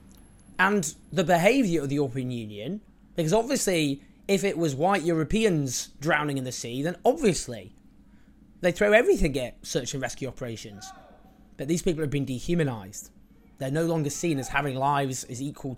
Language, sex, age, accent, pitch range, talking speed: English, male, 20-39, British, 125-170 Hz, 165 wpm